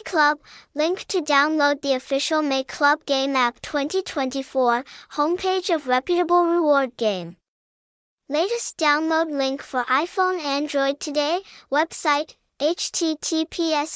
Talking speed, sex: 110 wpm, male